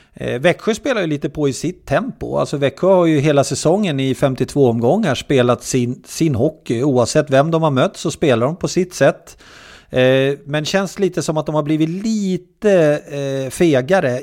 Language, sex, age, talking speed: English, male, 30-49, 175 wpm